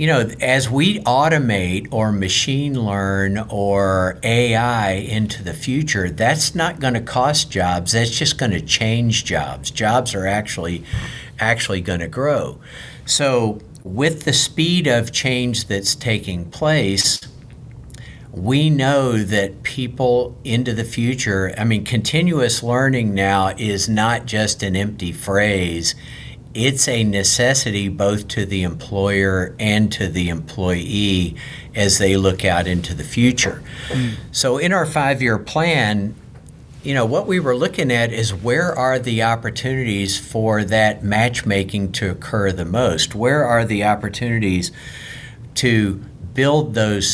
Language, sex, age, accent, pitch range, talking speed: English, male, 50-69, American, 100-125 Hz, 135 wpm